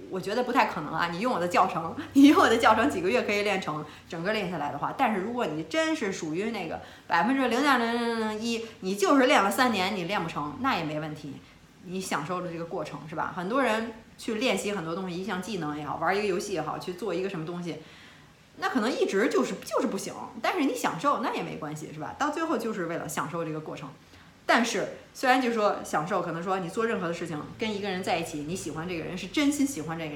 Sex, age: female, 30-49